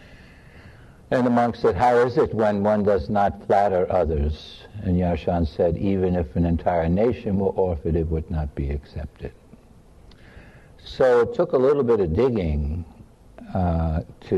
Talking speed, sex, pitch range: 160 wpm, male, 80-100 Hz